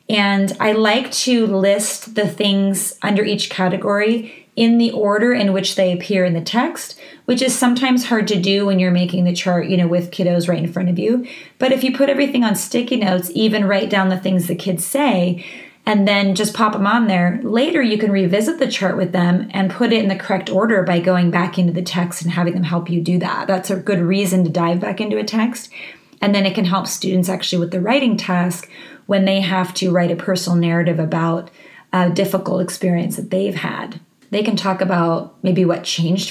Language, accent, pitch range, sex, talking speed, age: English, American, 180-215 Hz, female, 220 wpm, 30-49